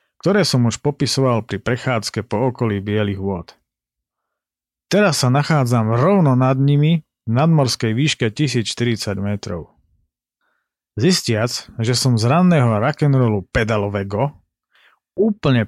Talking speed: 110 wpm